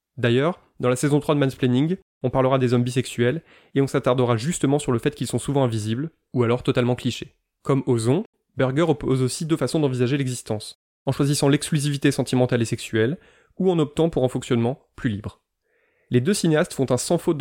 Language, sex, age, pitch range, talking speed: French, male, 20-39, 125-150 Hz, 195 wpm